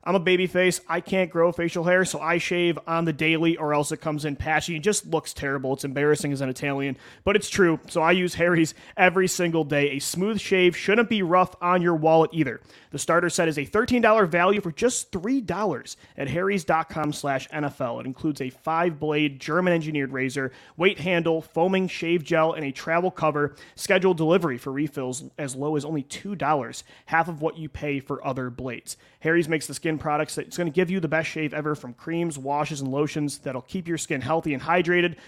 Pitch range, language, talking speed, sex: 150-185 Hz, English, 210 wpm, male